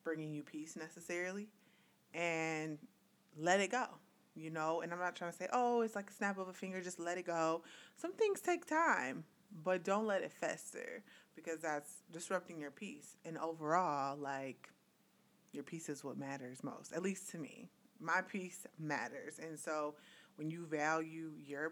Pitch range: 155-190 Hz